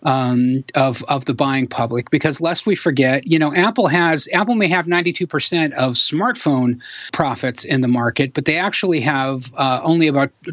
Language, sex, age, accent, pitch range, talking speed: English, male, 30-49, American, 135-170 Hz, 175 wpm